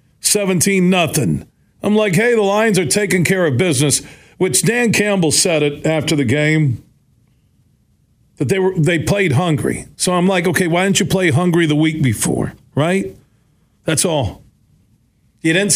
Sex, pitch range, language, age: male, 135-185 Hz, English, 50-69